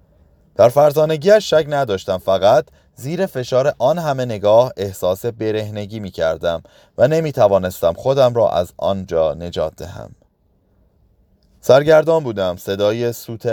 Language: Persian